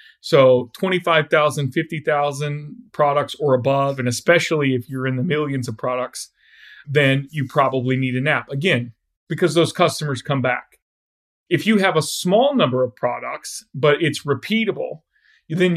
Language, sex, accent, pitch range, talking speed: English, male, American, 135-170 Hz, 150 wpm